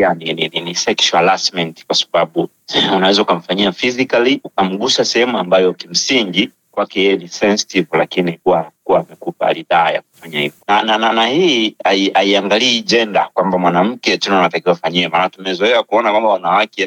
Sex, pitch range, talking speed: male, 95-115 Hz, 140 wpm